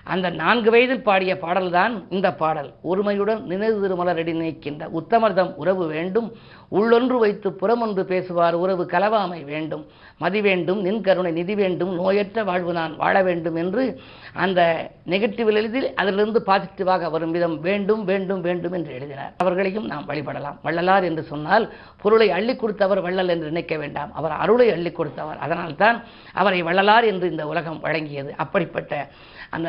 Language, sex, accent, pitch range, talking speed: Tamil, female, native, 160-195 Hz, 140 wpm